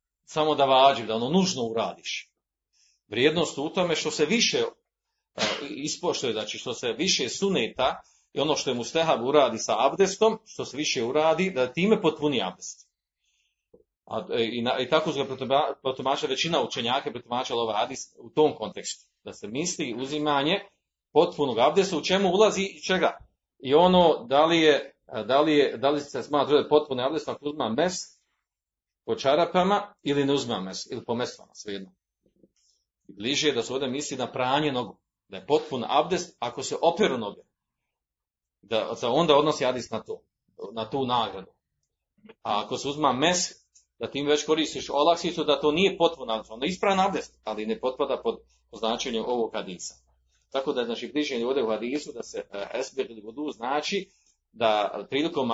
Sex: male